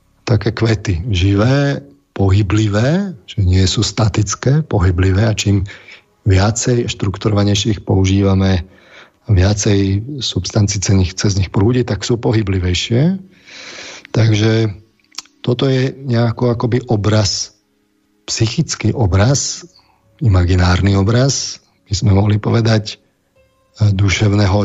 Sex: male